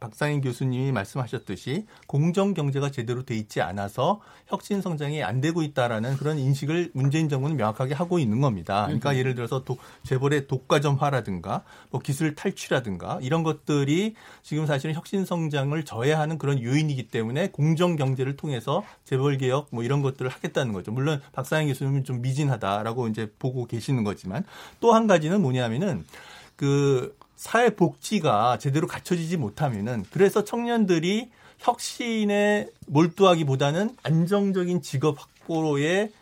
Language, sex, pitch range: Korean, male, 130-180 Hz